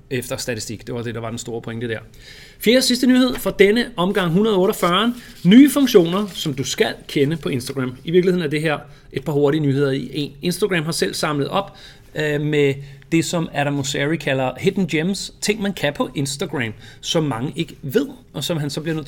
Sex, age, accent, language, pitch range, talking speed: male, 30-49, native, Danish, 135-175 Hz, 210 wpm